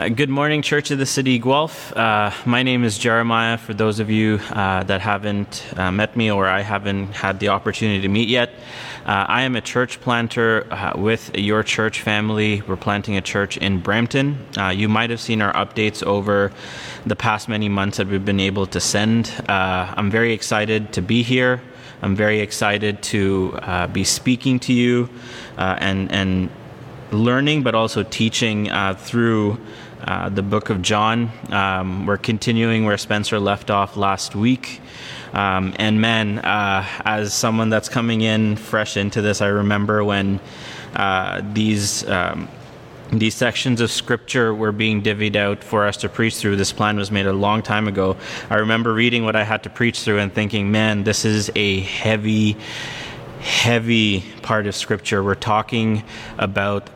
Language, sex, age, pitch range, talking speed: English, male, 20-39, 100-115 Hz, 175 wpm